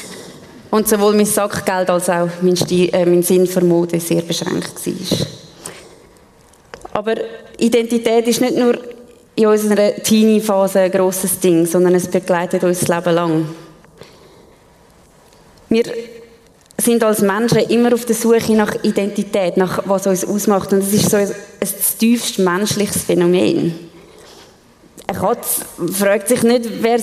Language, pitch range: German, 185-235 Hz